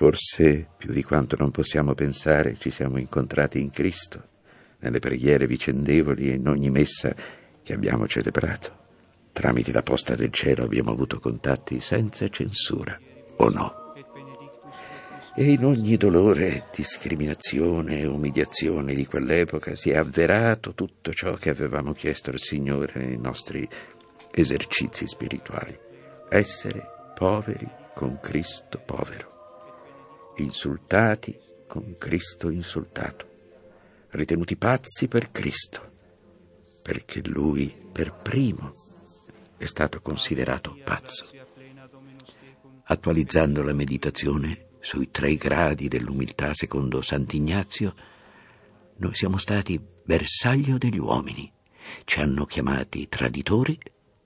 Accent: native